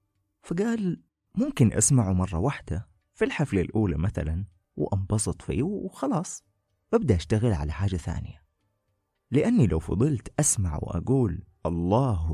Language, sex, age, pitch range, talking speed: Arabic, male, 30-49, 90-125 Hz, 110 wpm